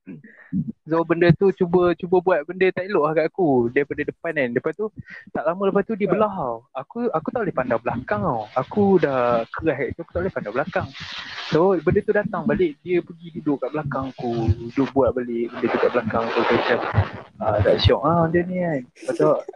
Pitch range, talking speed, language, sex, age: 130-165 Hz, 220 wpm, Malay, male, 20-39